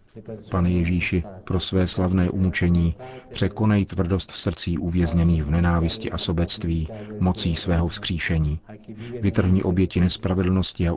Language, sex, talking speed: Czech, male, 120 wpm